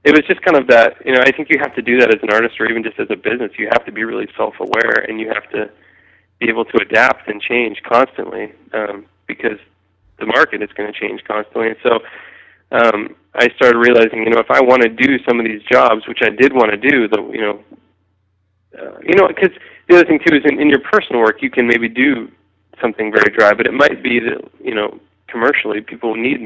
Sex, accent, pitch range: male, American, 105-135 Hz